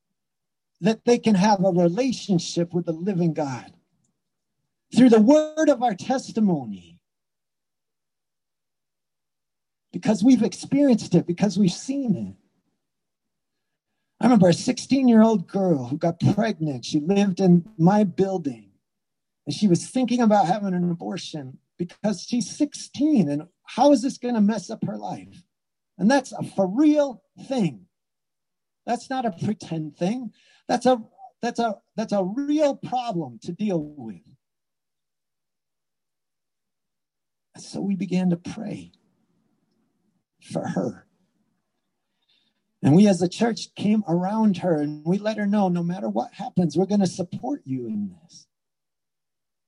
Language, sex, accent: English, male, American